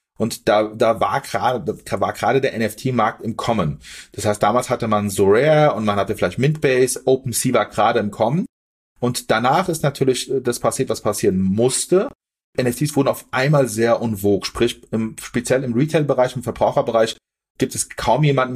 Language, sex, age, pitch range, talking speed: German, male, 30-49, 115-135 Hz, 170 wpm